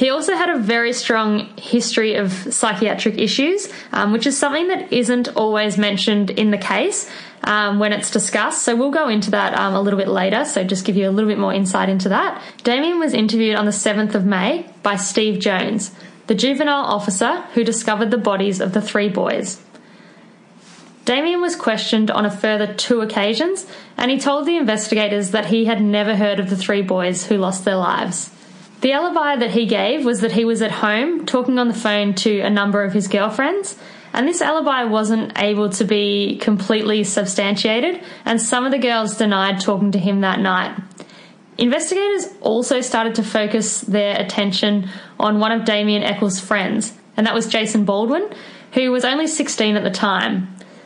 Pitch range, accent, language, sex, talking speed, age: 205-245 Hz, Australian, English, female, 190 wpm, 20-39